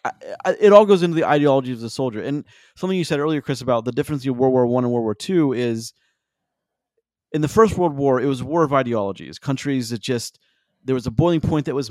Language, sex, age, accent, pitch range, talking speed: English, male, 30-49, American, 120-150 Hz, 250 wpm